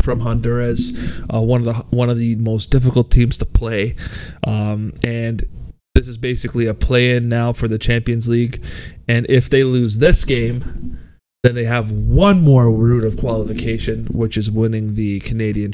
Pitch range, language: 105-120 Hz, English